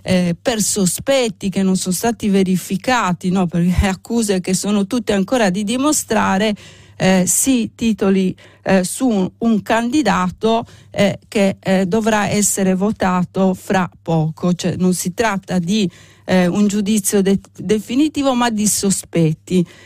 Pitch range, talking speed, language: 185-220 Hz, 140 wpm, Italian